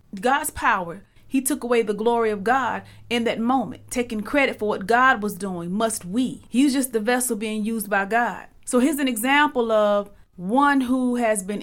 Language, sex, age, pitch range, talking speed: English, female, 30-49, 230-285 Hz, 195 wpm